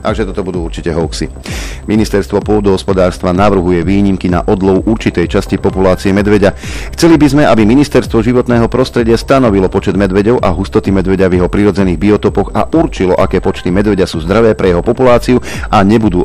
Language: Slovak